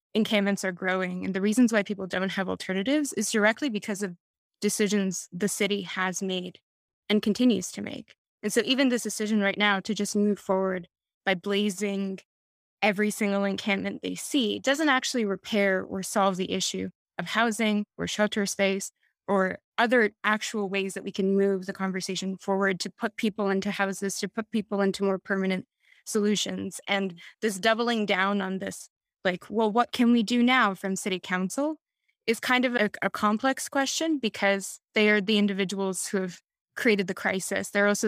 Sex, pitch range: female, 195-215 Hz